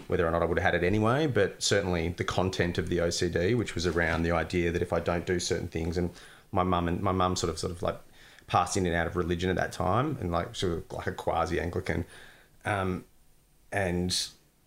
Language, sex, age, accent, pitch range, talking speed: English, male, 30-49, Australian, 85-90 Hz, 235 wpm